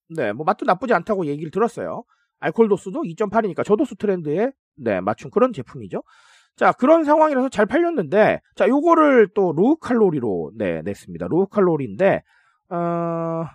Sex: male